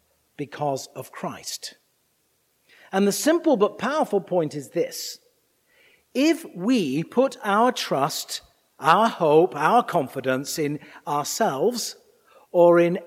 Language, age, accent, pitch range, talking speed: English, 50-69, British, 135-215 Hz, 110 wpm